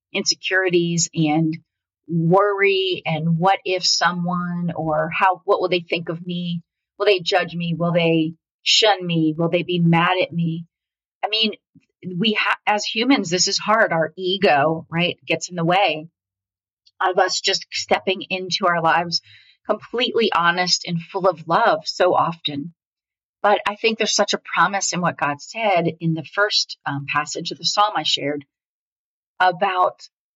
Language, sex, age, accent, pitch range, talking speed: English, female, 40-59, American, 165-195 Hz, 160 wpm